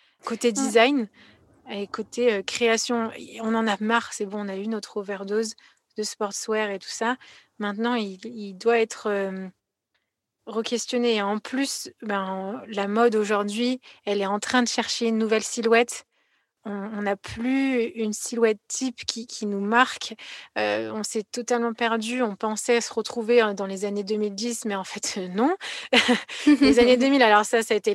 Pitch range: 205-240 Hz